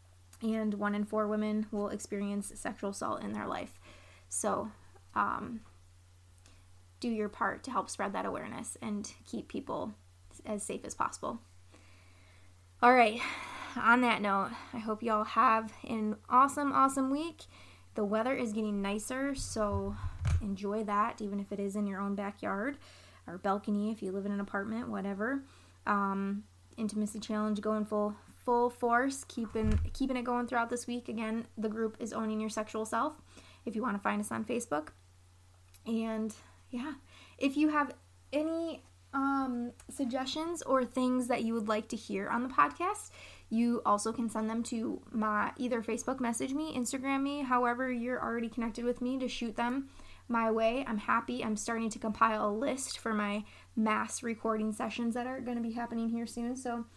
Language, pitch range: English, 200-245 Hz